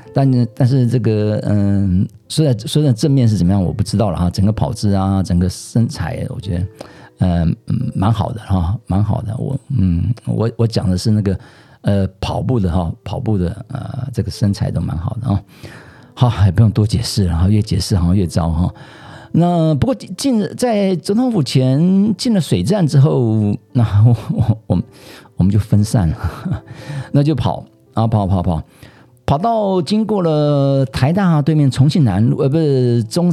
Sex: male